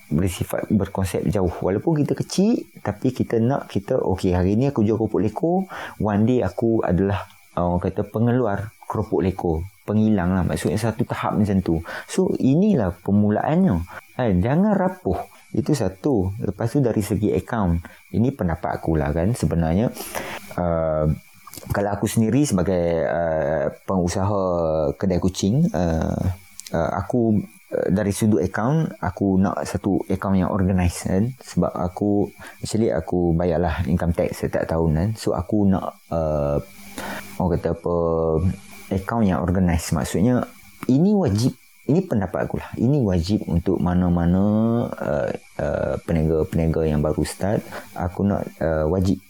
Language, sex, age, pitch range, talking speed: Malay, male, 30-49, 85-110 Hz, 140 wpm